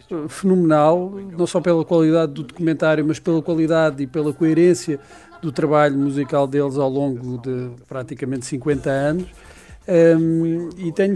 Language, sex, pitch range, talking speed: Portuguese, male, 140-170 Hz, 140 wpm